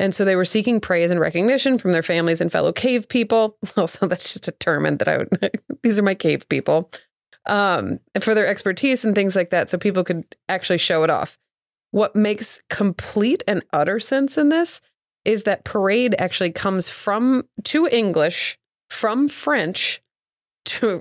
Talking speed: 175 wpm